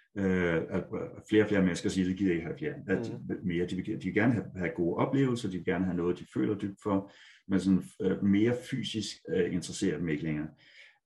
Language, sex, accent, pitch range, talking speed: Danish, male, native, 85-95 Hz, 165 wpm